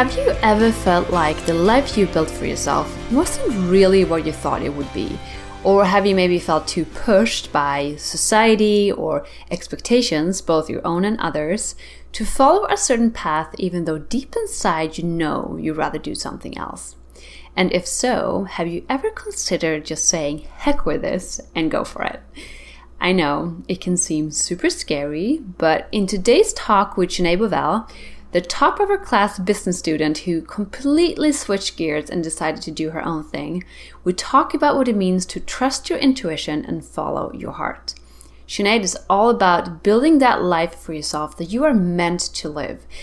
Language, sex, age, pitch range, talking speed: English, female, 30-49, 165-225 Hz, 180 wpm